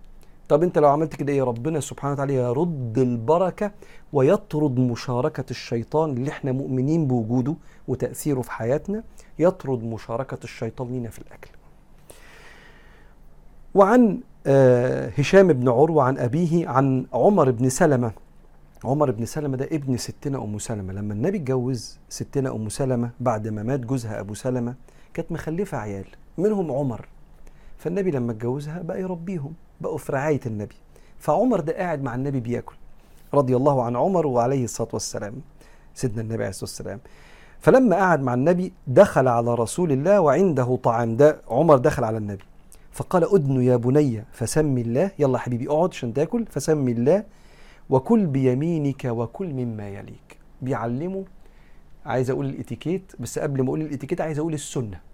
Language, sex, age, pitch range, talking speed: Arabic, male, 50-69, 120-155 Hz, 145 wpm